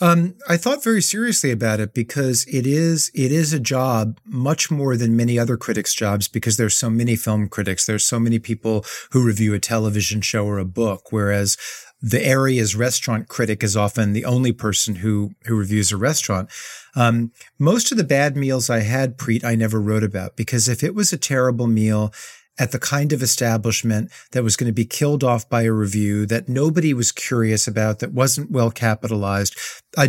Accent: American